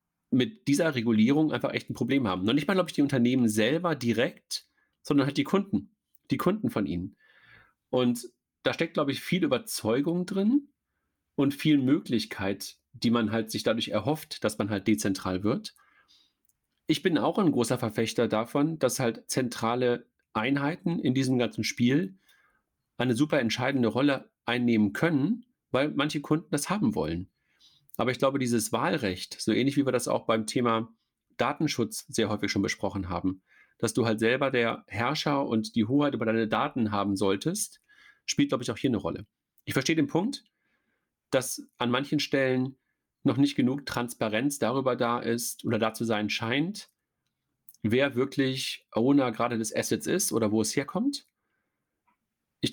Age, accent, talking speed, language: 40-59, German, 165 wpm, German